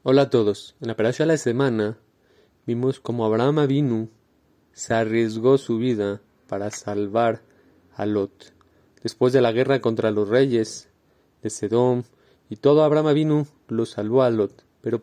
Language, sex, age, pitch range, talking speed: Spanish, male, 30-49, 115-145 Hz, 155 wpm